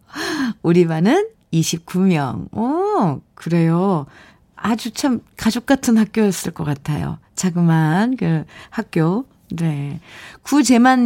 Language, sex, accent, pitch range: Korean, female, native, 170-240 Hz